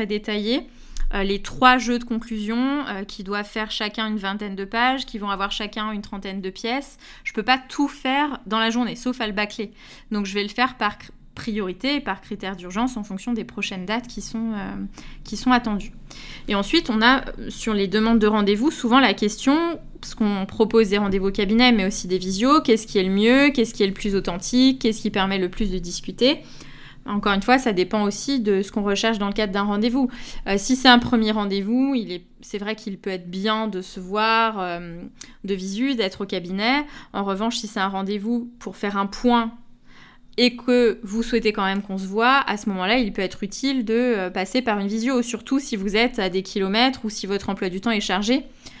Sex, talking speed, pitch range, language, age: female, 225 wpm, 200-245 Hz, French, 20-39